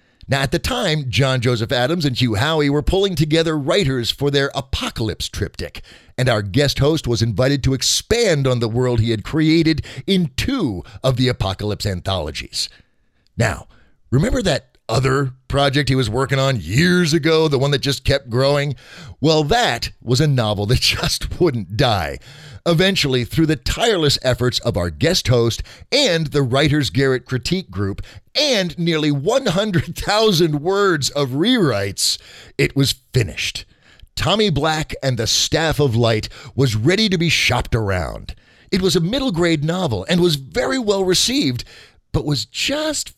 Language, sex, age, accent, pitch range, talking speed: English, male, 50-69, American, 120-170 Hz, 165 wpm